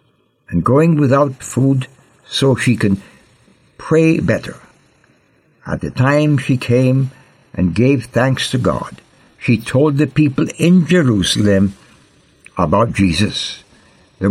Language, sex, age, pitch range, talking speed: English, male, 60-79, 115-150 Hz, 115 wpm